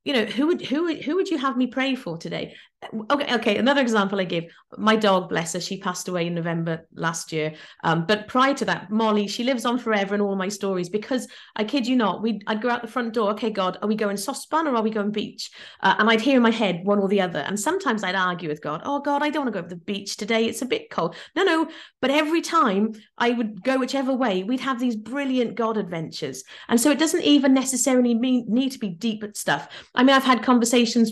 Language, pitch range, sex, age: English, 195-255 Hz, female, 40-59